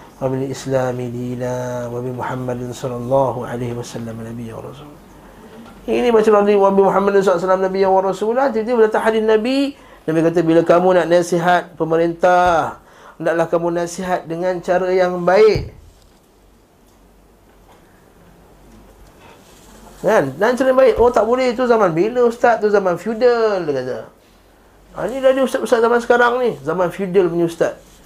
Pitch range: 165-210 Hz